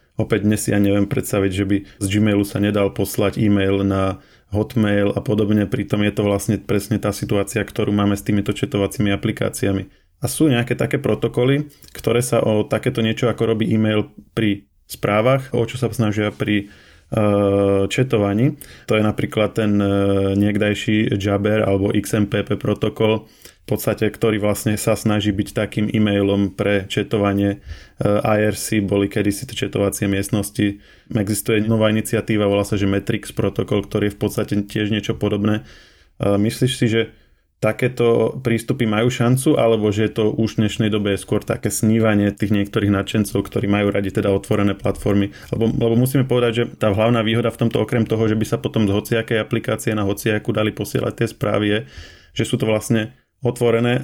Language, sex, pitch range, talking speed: Slovak, male, 100-115 Hz, 170 wpm